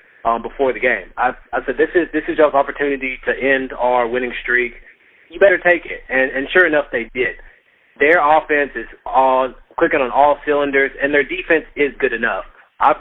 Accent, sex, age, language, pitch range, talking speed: American, male, 30-49, English, 125-155 Hz, 200 wpm